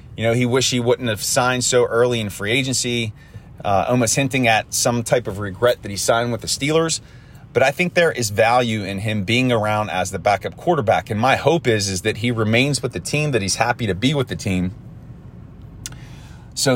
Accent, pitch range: American, 110-130 Hz